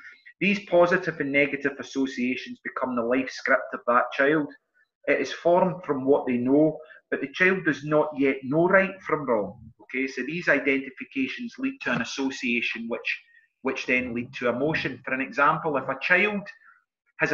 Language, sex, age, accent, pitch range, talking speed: English, male, 30-49, British, 130-165 Hz, 175 wpm